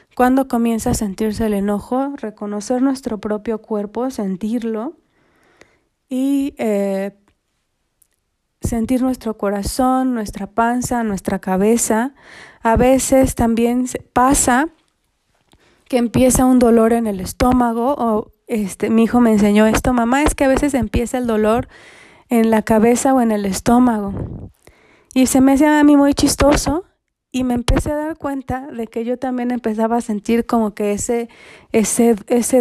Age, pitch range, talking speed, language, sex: 30-49, 220-255 Hz, 145 wpm, Spanish, female